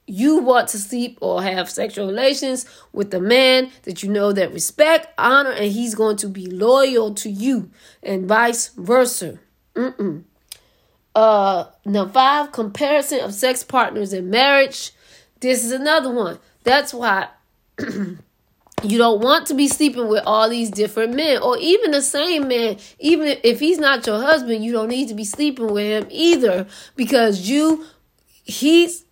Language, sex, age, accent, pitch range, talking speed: English, female, 20-39, American, 215-280 Hz, 160 wpm